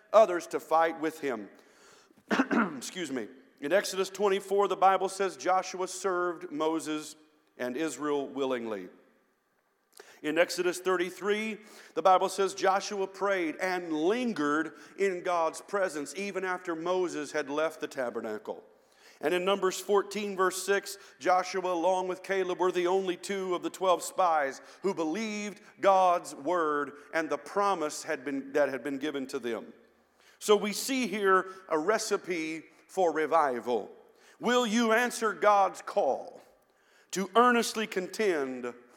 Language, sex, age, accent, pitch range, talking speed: English, male, 50-69, American, 160-200 Hz, 135 wpm